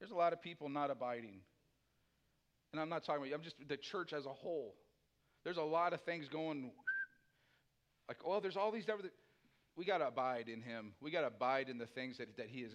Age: 50-69